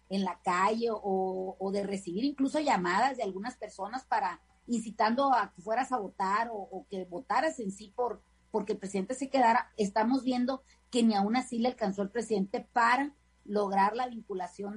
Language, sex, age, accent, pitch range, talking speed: Spanish, female, 40-59, Mexican, 195-245 Hz, 185 wpm